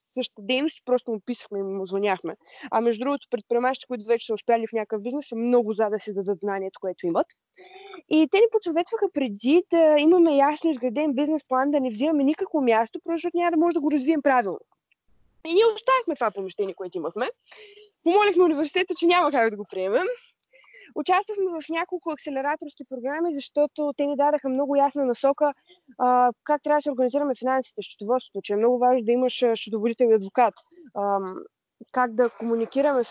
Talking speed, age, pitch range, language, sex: 180 wpm, 20-39, 235-330 Hz, Bulgarian, female